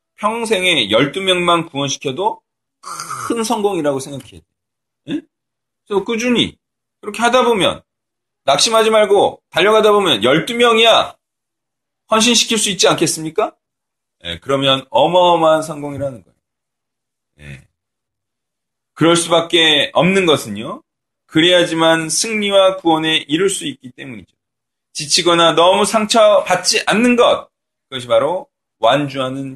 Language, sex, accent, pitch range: Korean, male, native, 130-200 Hz